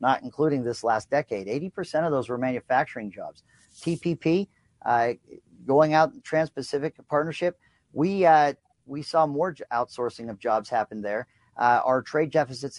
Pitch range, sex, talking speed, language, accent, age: 125-160 Hz, male, 140 wpm, English, American, 50-69